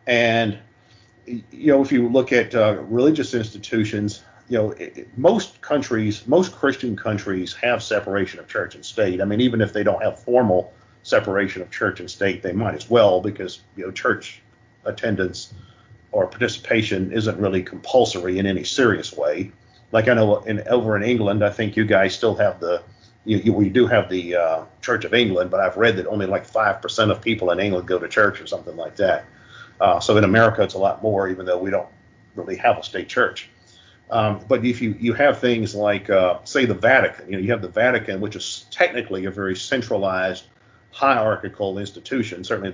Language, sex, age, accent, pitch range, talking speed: English, male, 50-69, American, 95-115 Hz, 190 wpm